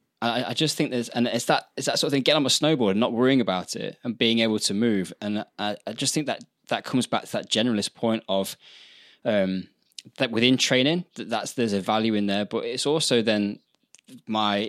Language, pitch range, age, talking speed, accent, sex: English, 95-120 Hz, 20-39, 230 wpm, British, male